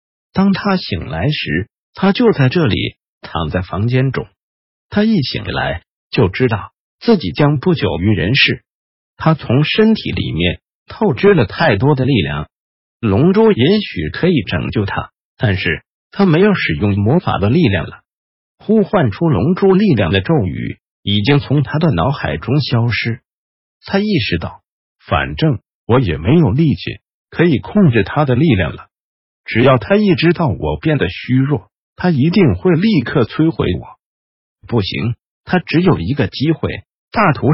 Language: Chinese